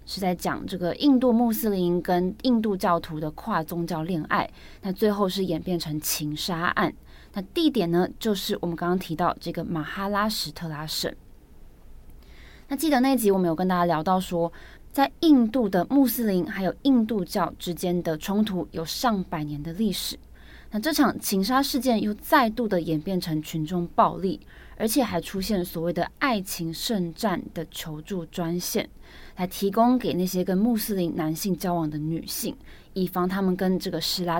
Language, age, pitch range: Chinese, 20-39, 165-210 Hz